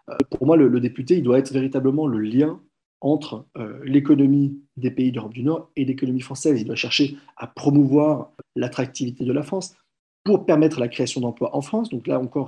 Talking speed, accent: 195 wpm, French